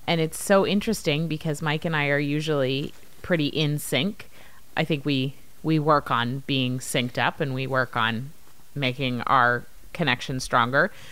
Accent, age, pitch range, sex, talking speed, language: American, 30-49, 150-190 Hz, female, 160 wpm, English